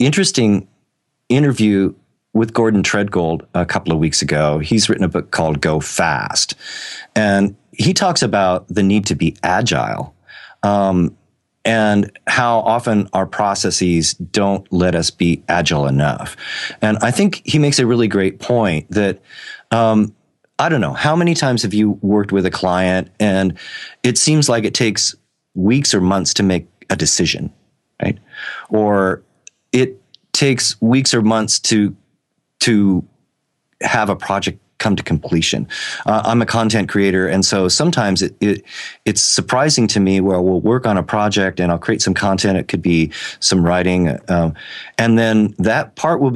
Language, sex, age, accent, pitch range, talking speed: English, male, 40-59, American, 95-115 Hz, 165 wpm